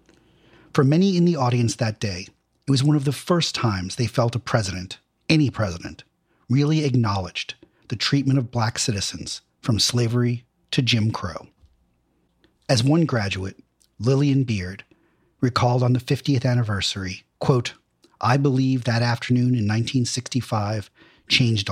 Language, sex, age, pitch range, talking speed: English, male, 40-59, 110-135 Hz, 140 wpm